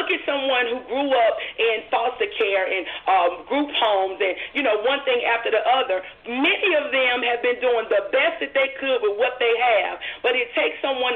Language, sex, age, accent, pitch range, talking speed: English, female, 40-59, American, 240-295 Hz, 215 wpm